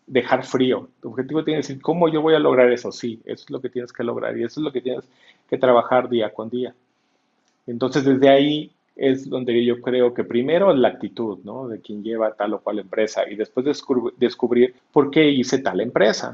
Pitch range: 115-135 Hz